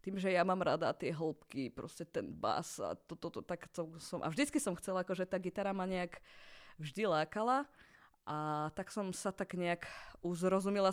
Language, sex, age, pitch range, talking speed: Slovak, female, 20-39, 170-205 Hz, 185 wpm